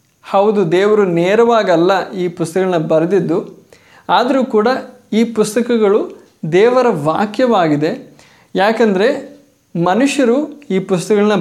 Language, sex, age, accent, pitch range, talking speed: Kannada, male, 20-39, native, 180-240 Hz, 85 wpm